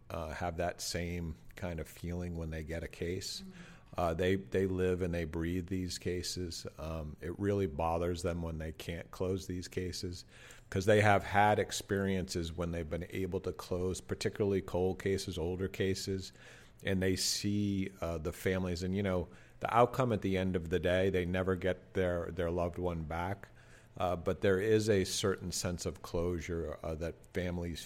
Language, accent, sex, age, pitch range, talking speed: English, American, male, 50-69, 85-95 Hz, 185 wpm